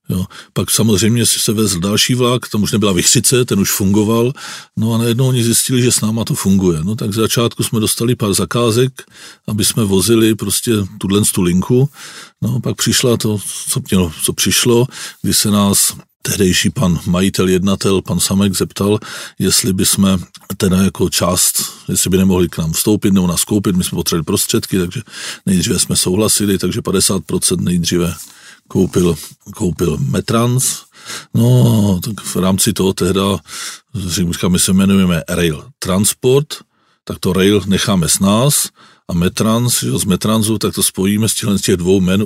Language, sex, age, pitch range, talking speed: Czech, male, 40-59, 95-115 Hz, 160 wpm